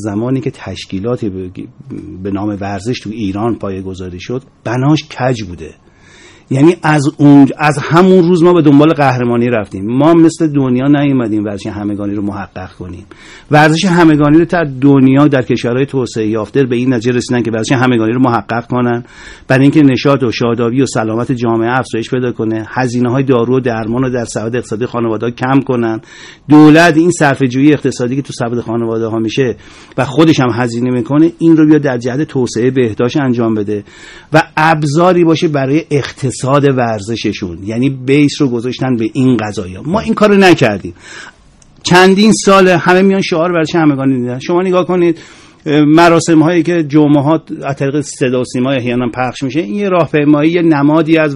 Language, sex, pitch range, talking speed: Persian, male, 120-155 Hz, 170 wpm